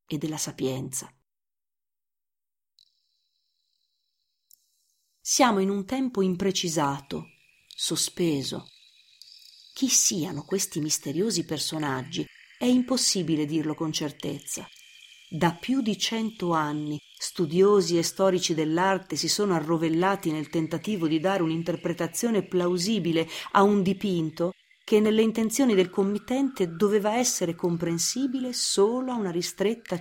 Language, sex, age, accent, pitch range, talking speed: Italian, female, 40-59, native, 165-245 Hz, 105 wpm